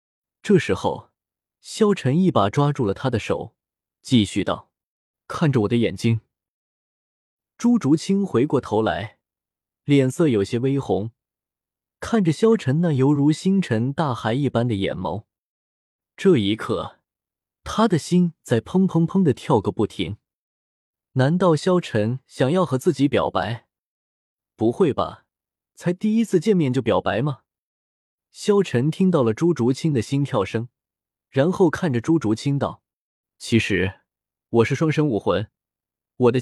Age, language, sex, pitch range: 20-39, Chinese, male, 110-165 Hz